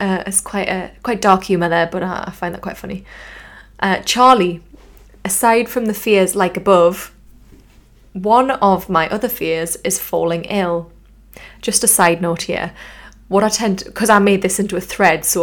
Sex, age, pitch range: female, 20-39, 175-210 Hz